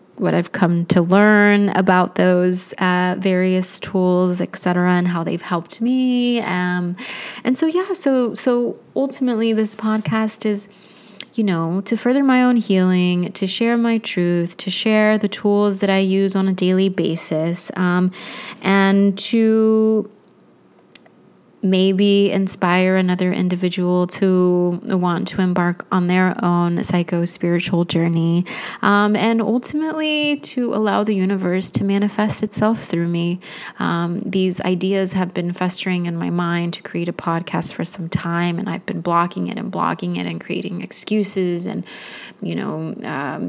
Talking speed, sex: 150 wpm, female